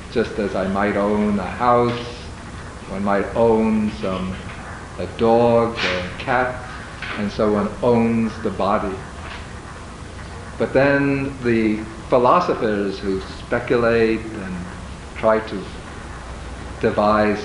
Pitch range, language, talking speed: 95-120 Hz, English, 110 wpm